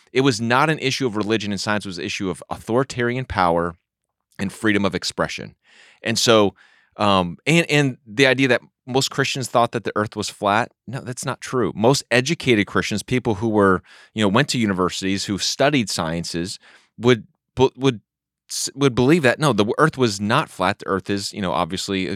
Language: English